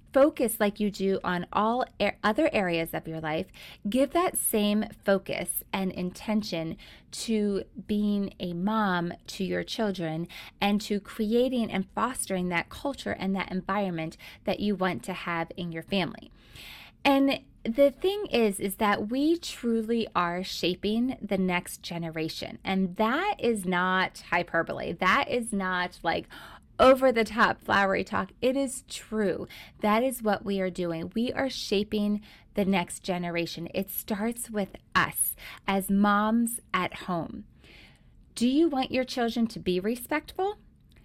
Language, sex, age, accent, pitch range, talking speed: English, female, 20-39, American, 180-235 Hz, 150 wpm